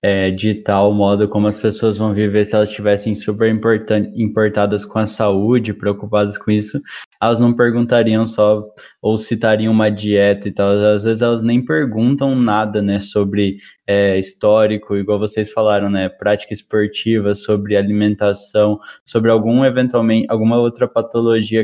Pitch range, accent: 105-115 Hz, Brazilian